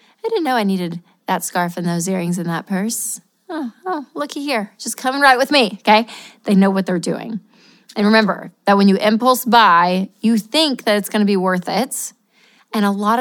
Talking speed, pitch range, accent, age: 215 wpm, 195-230 Hz, American, 20-39